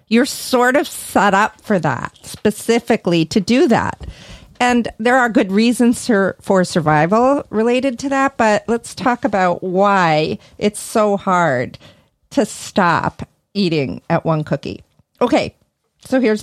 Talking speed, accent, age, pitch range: 140 wpm, American, 50-69, 185-235 Hz